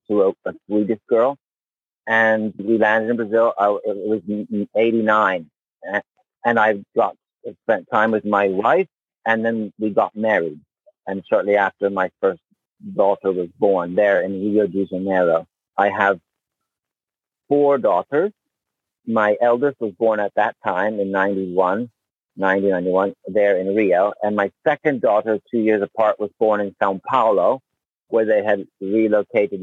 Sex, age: male, 50-69